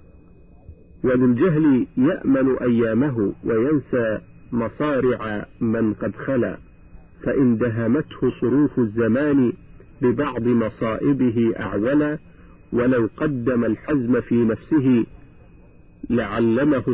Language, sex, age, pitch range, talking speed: Arabic, male, 50-69, 110-140 Hz, 80 wpm